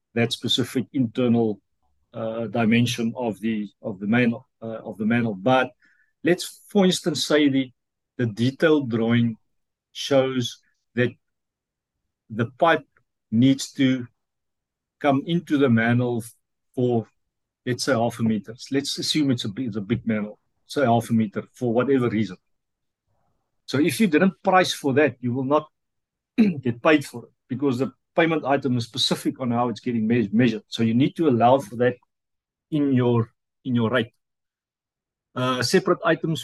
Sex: male